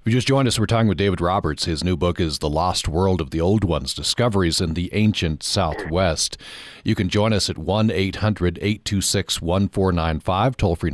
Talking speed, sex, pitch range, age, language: 180 wpm, male, 85-115 Hz, 40-59, English